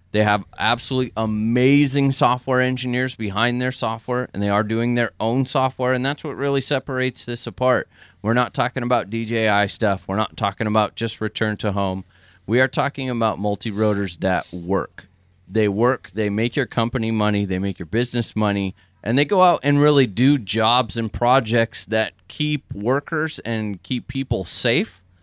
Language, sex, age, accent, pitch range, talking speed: English, male, 20-39, American, 100-120 Hz, 175 wpm